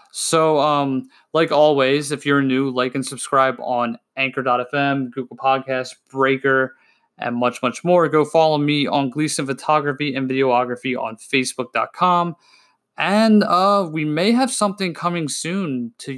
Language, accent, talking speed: English, American, 140 wpm